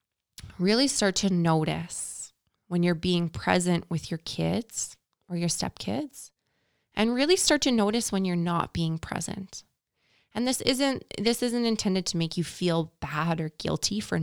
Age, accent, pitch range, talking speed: 20-39, American, 165-215 Hz, 160 wpm